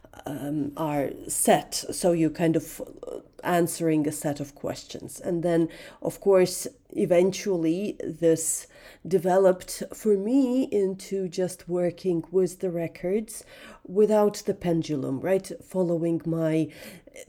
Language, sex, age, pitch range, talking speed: English, female, 40-59, 155-205 Hz, 115 wpm